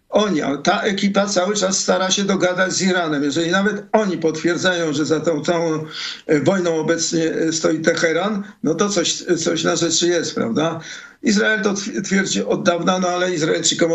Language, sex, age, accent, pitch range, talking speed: Polish, male, 50-69, native, 170-200 Hz, 165 wpm